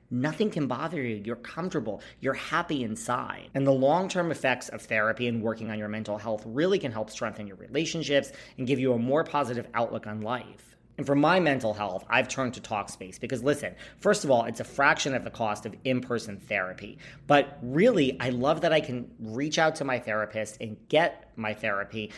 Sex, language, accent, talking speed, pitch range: male, English, American, 205 wpm, 110-145 Hz